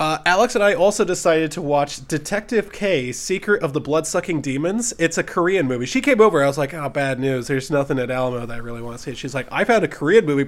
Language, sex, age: English, male, 20-39